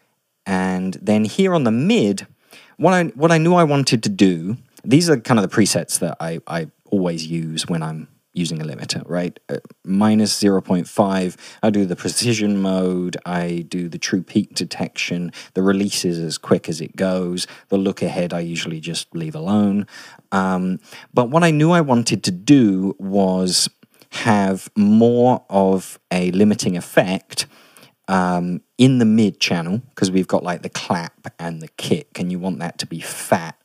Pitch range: 90-115 Hz